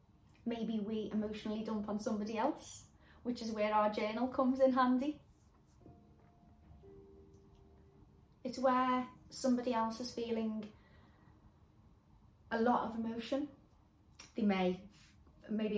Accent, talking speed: British, 105 wpm